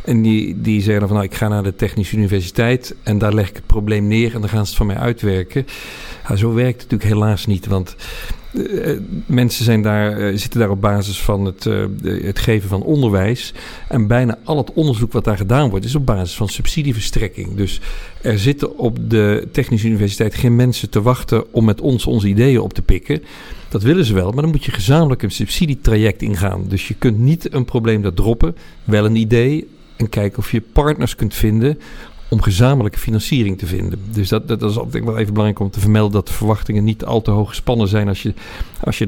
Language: Dutch